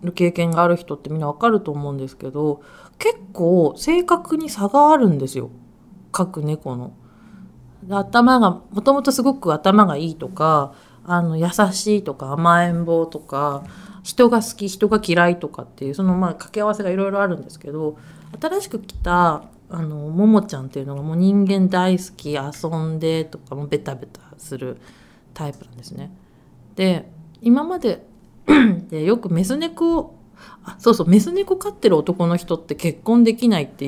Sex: female